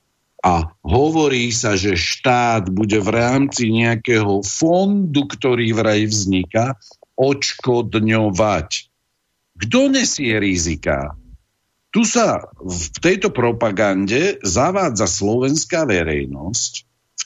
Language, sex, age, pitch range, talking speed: Slovak, male, 60-79, 100-130 Hz, 90 wpm